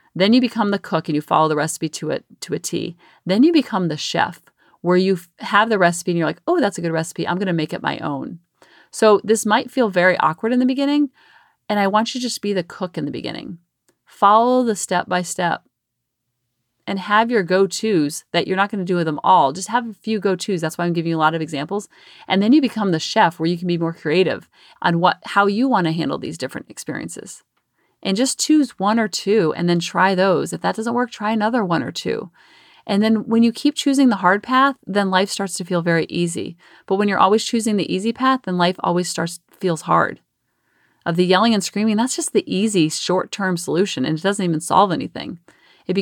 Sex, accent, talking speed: female, American, 235 wpm